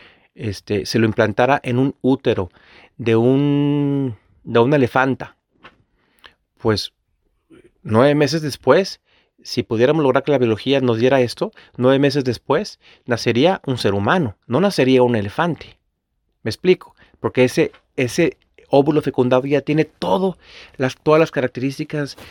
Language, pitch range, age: Spanish, 125-155 Hz, 40-59